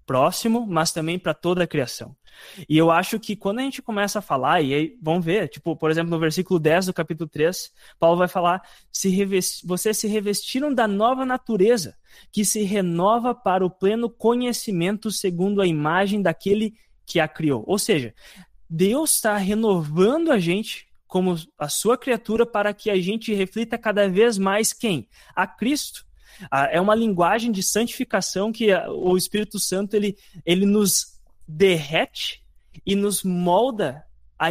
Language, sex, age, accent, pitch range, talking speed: Portuguese, male, 20-39, Brazilian, 170-215 Hz, 155 wpm